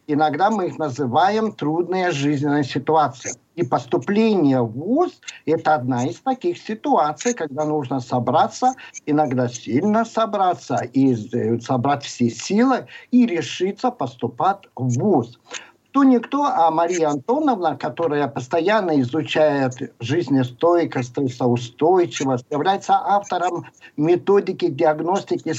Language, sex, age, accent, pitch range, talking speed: Russian, male, 50-69, native, 135-195 Hz, 110 wpm